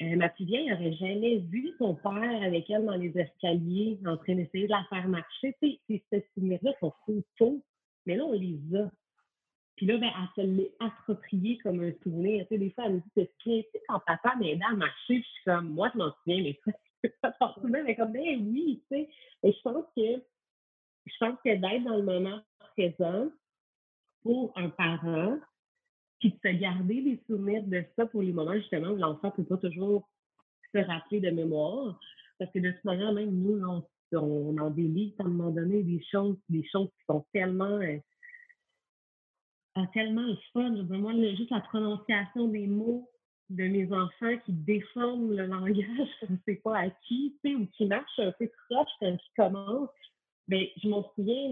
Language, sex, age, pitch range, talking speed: French, female, 30-49, 185-230 Hz, 200 wpm